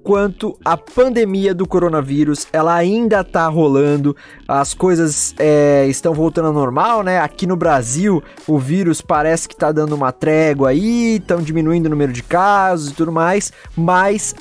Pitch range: 155-210 Hz